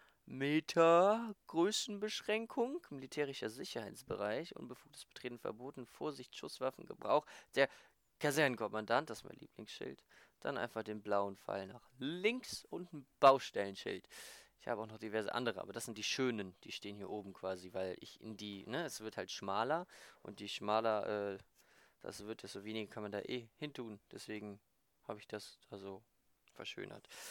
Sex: male